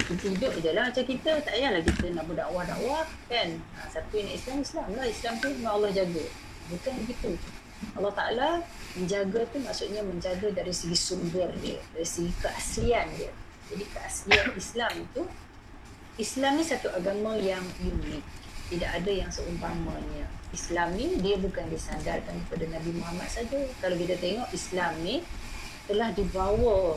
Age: 30-49